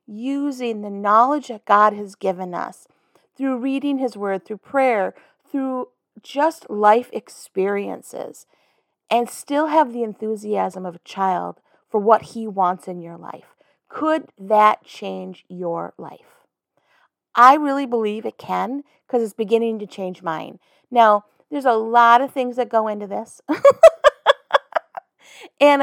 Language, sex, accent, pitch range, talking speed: English, female, American, 205-260 Hz, 140 wpm